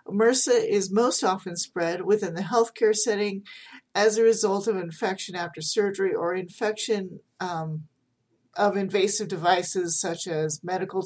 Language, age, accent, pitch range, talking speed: English, 40-59, American, 175-210 Hz, 135 wpm